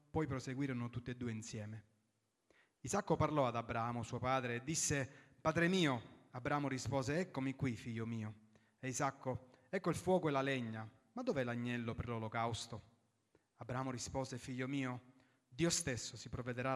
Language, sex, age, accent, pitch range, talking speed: Italian, male, 30-49, native, 120-150 Hz, 155 wpm